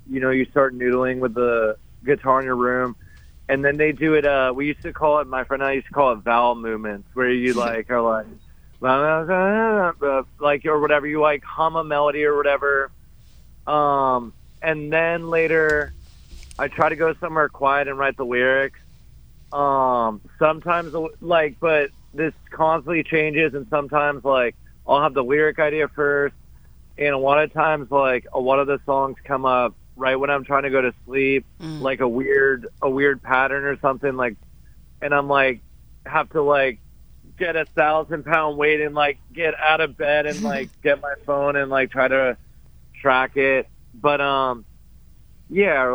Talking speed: 180 wpm